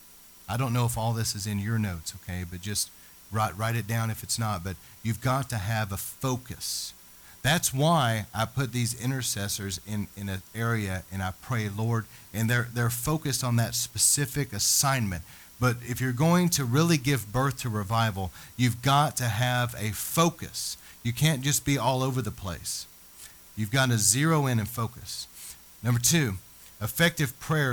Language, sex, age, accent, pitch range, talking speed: English, male, 40-59, American, 100-125 Hz, 180 wpm